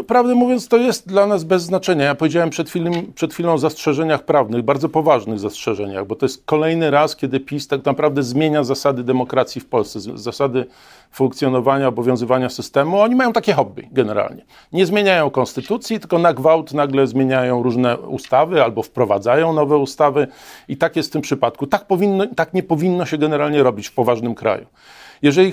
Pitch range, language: 120-165 Hz, Polish